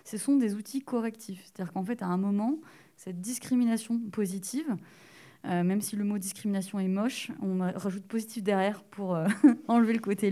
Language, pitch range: English, 195-245 Hz